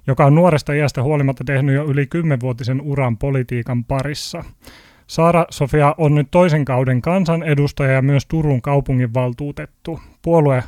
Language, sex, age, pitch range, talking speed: Finnish, male, 30-49, 130-150 Hz, 140 wpm